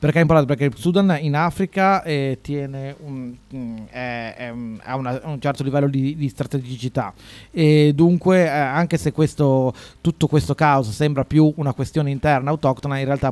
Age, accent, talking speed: 30-49, native, 170 wpm